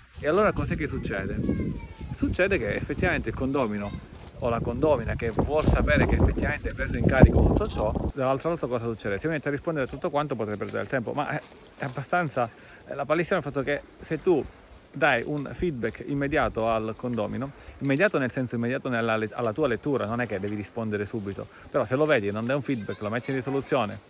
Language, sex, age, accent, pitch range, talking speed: Italian, male, 40-59, native, 115-150 Hz, 210 wpm